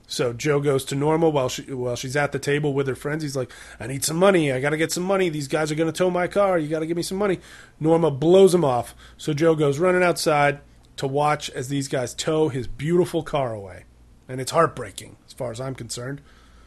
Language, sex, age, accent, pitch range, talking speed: English, male, 30-49, American, 130-165 Hz, 240 wpm